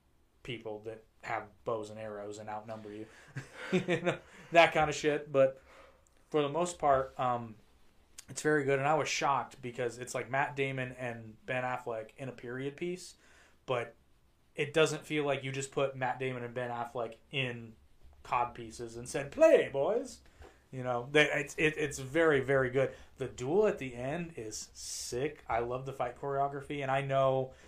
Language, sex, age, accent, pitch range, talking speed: English, male, 30-49, American, 115-145 Hz, 180 wpm